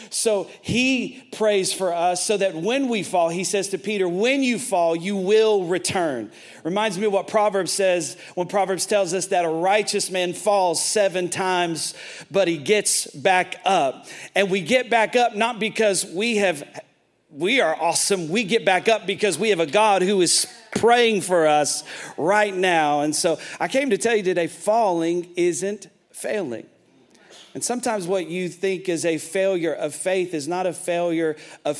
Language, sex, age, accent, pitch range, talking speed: English, male, 40-59, American, 160-200 Hz, 180 wpm